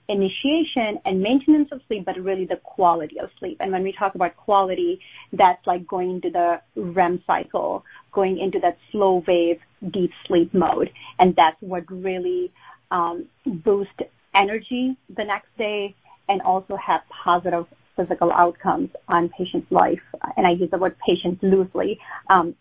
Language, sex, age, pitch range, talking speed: English, female, 30-49, 180-205 Hz, 155 wpm